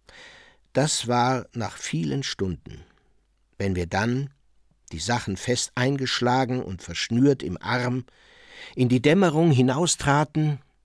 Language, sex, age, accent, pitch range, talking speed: German, male, 60-79, German, 120-145 Hz, 110 wpm